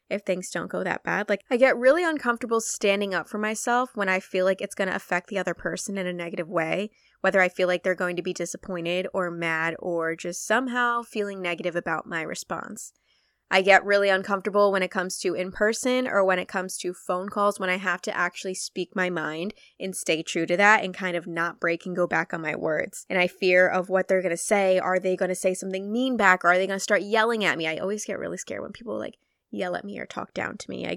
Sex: female